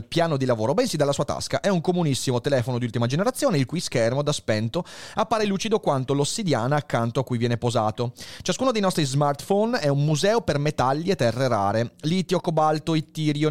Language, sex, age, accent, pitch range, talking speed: Italian, male, 30-49, native, 125-185 Hz, 190 wpm